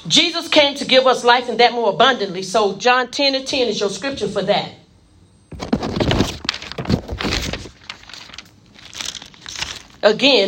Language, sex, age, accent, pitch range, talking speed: English, female, 40-59, American, 160-245 Hz, 120 wpm